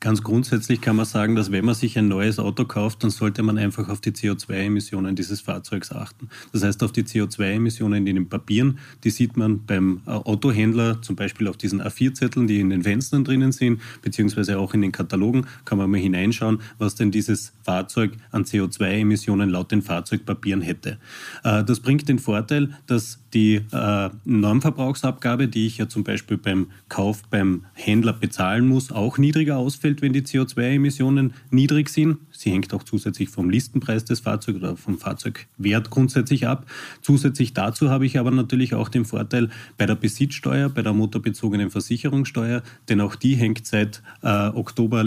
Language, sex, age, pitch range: German, male, 30-49, 105-125 Hz